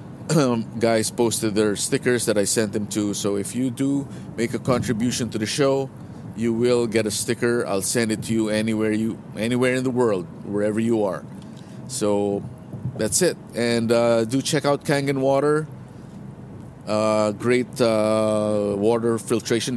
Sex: male